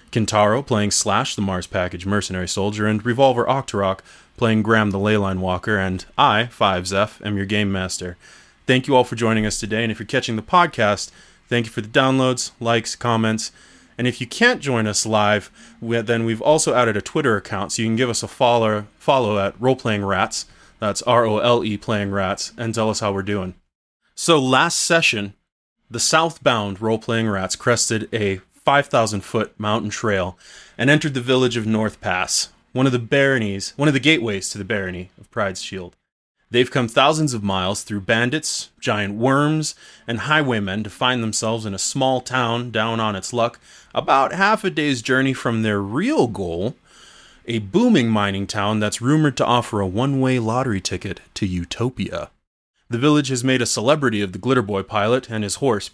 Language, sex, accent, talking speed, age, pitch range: English, male, American, 185 wpm, 20-39, 100-125 Hz